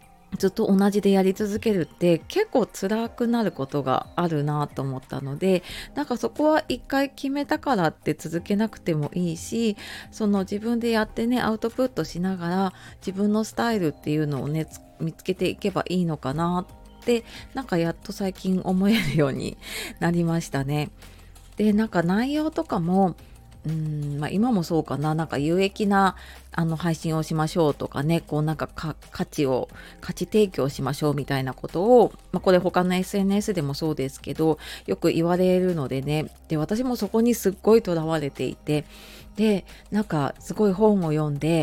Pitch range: 155-205 Hz